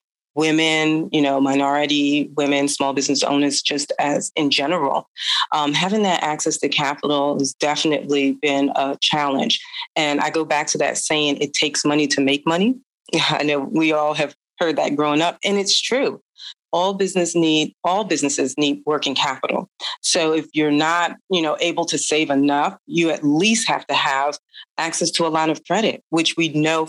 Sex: female